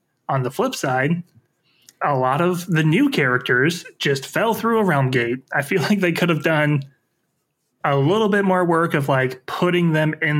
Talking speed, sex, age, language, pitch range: 190 wpm, male, 20-39, English, 130-160 Hz